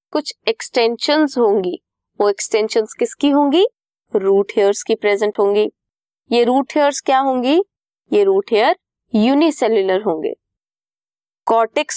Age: 20-39